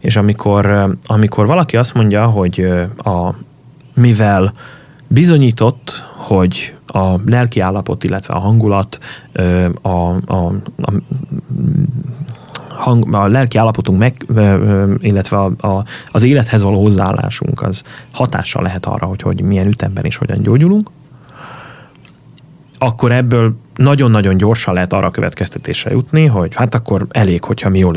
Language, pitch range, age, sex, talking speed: Hungarian, 95-130 Hz, 30-49, male, 125 wpm